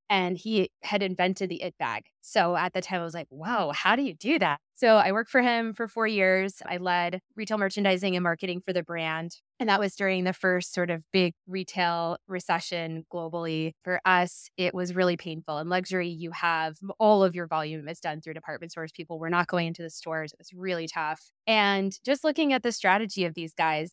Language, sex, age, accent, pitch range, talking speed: English, female, 20-39, American, 165-200 Hz, 220 wpm